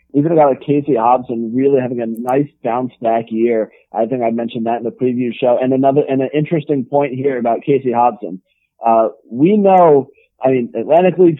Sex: male